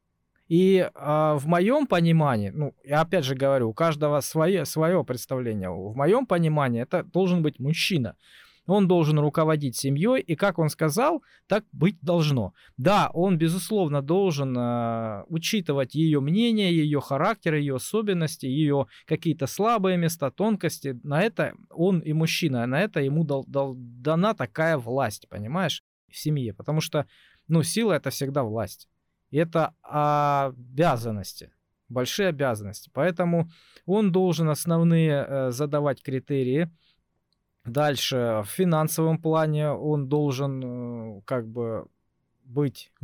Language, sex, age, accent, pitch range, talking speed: Russian, male, 20-39, native, 125-165 Hz, 125 wpm